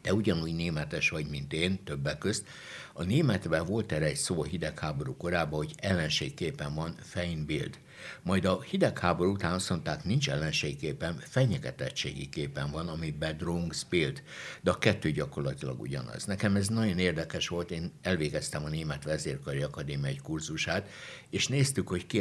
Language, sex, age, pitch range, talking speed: Hungarian, male, 60-79, 75-90 Hz, 145 wpm